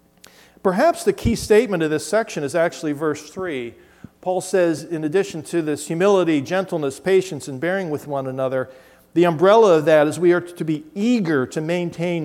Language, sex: English, male